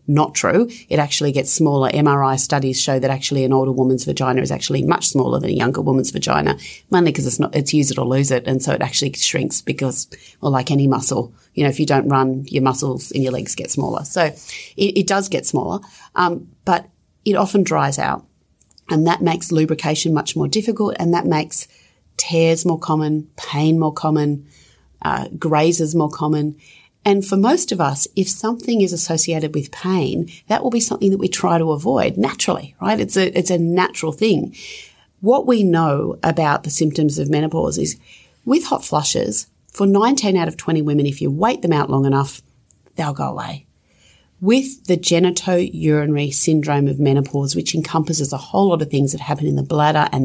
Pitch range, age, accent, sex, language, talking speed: 140-180 Hz, 30-49, Australian, female, English, 195 wpm